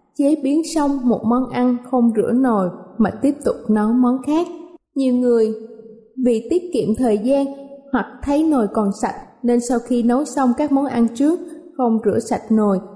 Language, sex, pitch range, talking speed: Vietnamese, female, 220-280 Hz, 185 wpm